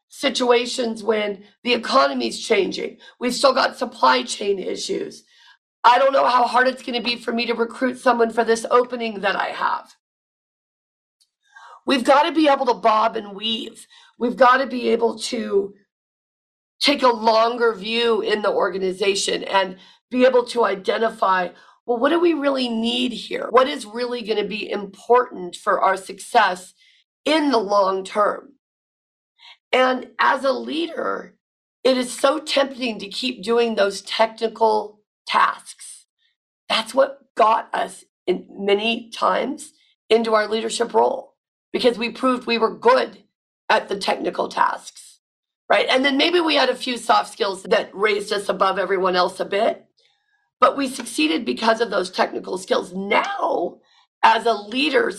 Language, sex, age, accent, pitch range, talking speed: English, female, 40-59, American, 215-270 Hz, 150 wpm